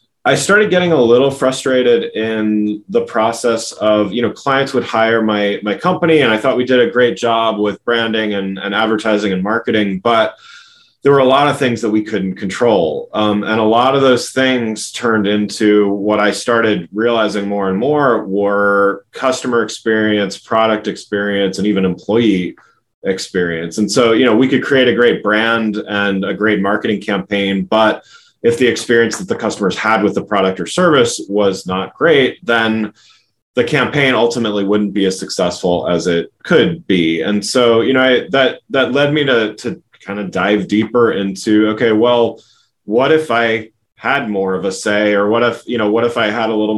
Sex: male